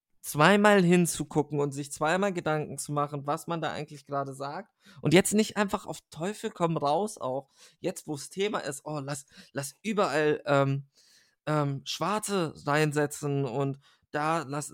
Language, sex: German, male